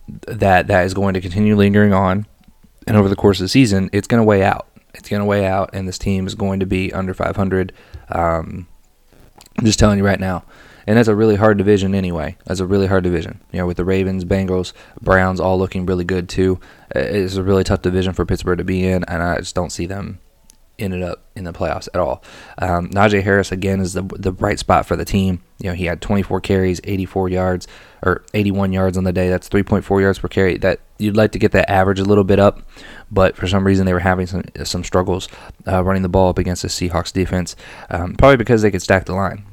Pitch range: 90-100 Hz